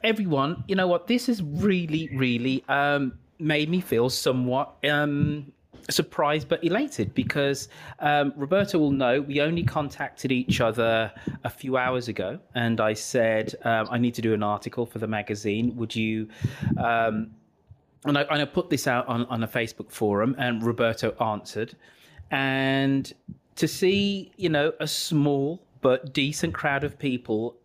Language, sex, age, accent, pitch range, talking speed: English, male, 30-49, British, 115-150 Hz, 160 wpm